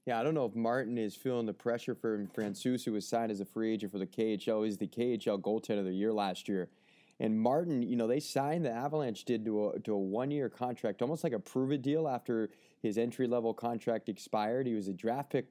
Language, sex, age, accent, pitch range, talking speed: English, male, 20-39, American, 105-130 Hz, 235 wpm